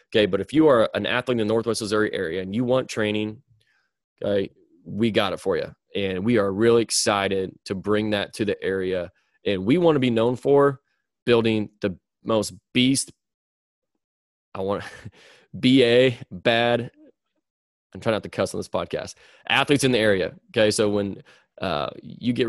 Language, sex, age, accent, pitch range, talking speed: English, male, 20-39, American, 105-130 Hz, 180 wpm